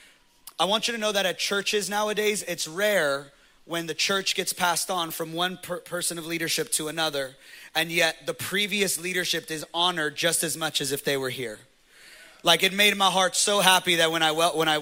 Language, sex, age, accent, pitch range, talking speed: English, male, 30-49, American, 155-190 Hz, 210 wpm